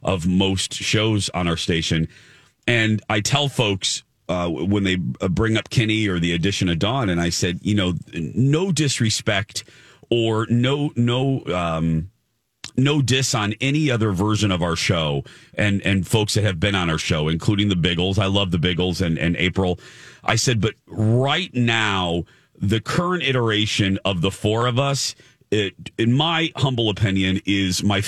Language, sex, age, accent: English, male, 40-59, American